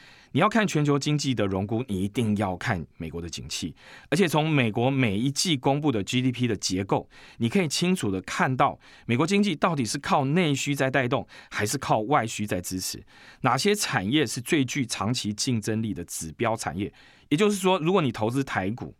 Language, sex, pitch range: Chinese, male, 100-145 Hz